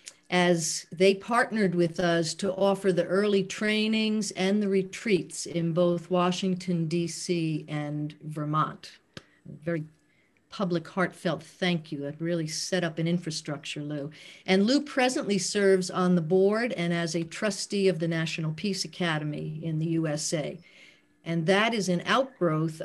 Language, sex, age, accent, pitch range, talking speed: English, female, 50-69, American, 165-195 Hz, 145 wpm